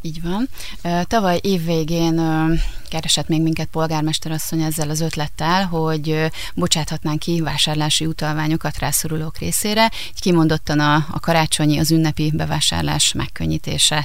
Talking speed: 105 wpm